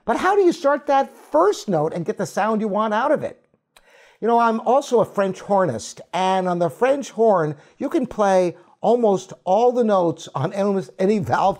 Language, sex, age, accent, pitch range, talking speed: English, male, 50-69, American, 165-235 Hz, 205 wpm